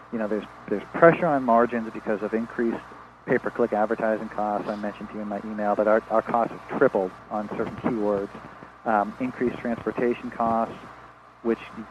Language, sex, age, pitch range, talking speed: English, male, 40-59, 110-120 Hz, 175 wpm